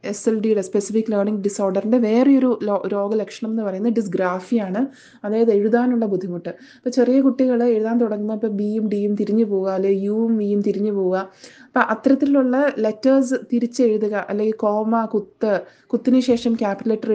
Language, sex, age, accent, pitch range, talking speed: Malayalam, female, 20-39, native, 200-240 Hz, 145 wpm